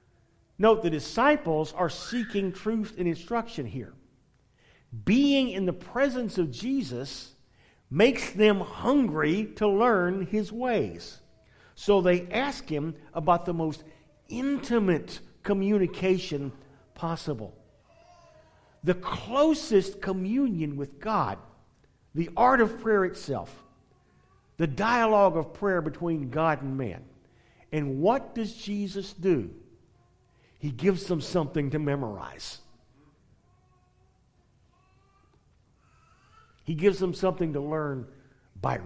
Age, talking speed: 50-69, 105 wpm